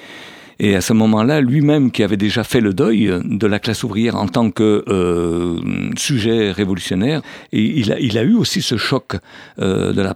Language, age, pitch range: French, 50-69, 105-130 Hz